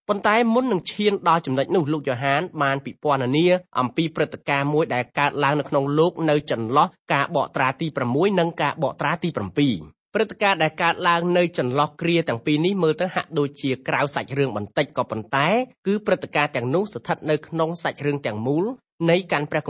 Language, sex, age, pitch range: English, male, 30-49, 135-170 Hz